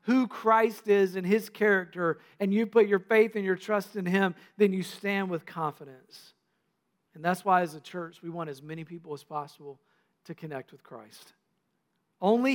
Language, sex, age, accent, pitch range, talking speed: English, male, 50-69, American, 150-190 Hz, 185 wpm